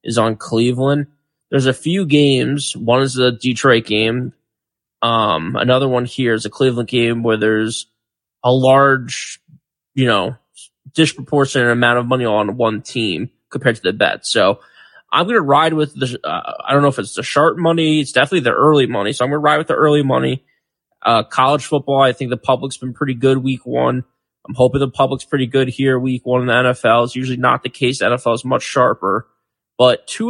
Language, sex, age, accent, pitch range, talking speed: English, male, 20-39, American, 125-150 Hz, 205 wpm